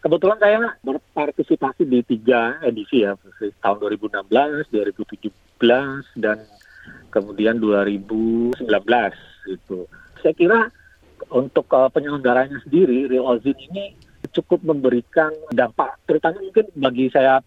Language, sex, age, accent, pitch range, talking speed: Indonesian, male, 40-59, native, 115-155 Hz, 100 wpm